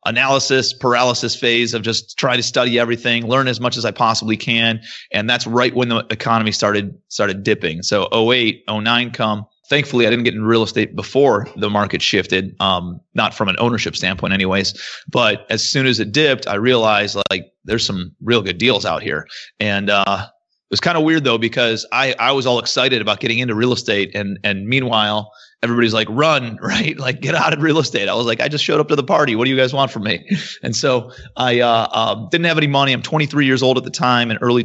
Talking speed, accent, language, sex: 225 wpm, American, English, male